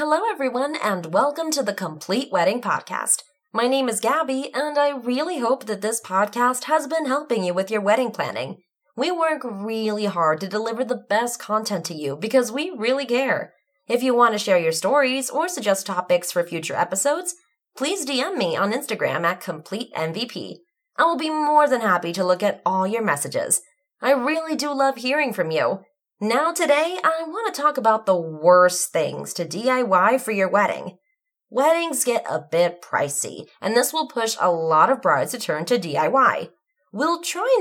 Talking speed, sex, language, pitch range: 185 wpm, female, English, 185-290 Hz